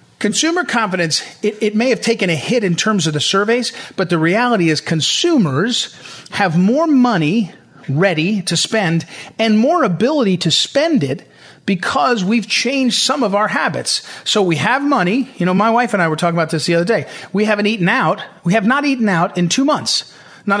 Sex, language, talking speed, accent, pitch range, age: male, English, 200 wpm, American, 165-225 Hz, 40-59